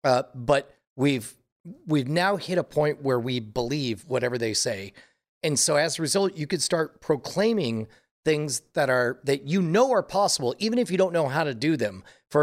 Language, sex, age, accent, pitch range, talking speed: English, male, 40-59, American, 120-155 Hz, 200 wpm